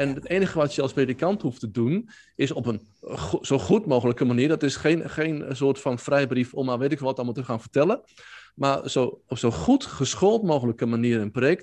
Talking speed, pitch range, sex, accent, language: 220 wpm, 120-160 Hz, male, Dutch, Dutch